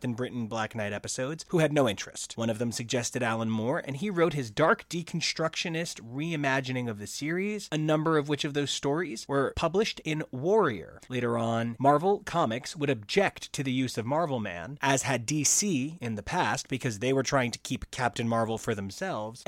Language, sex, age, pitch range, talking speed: English, male, 30-49, 120-170 Hz, 195 wpm